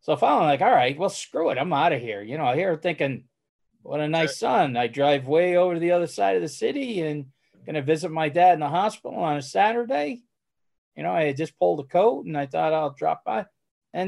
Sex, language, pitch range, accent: male, English, 145-210 Hz, American